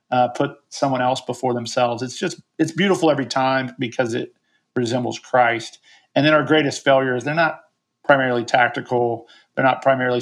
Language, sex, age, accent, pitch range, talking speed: English, male, 40-59, American, 120-135 Hz, 165 wpm